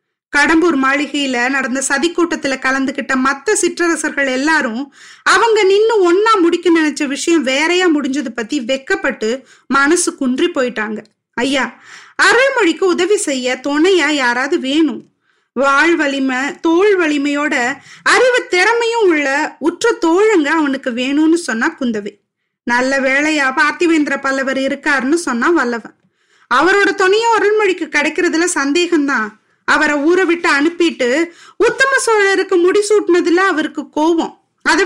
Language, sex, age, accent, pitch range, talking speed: Tamil, female, 20-39, native, 270-365 Hz, 105 wpm